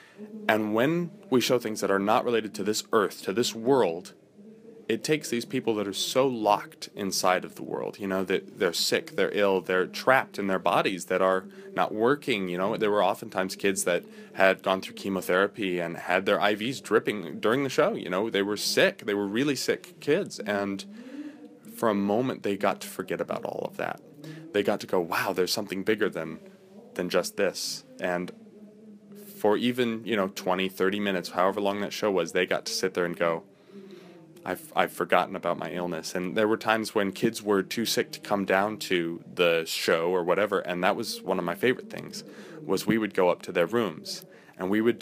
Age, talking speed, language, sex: 20-39, 210 wpm, English, male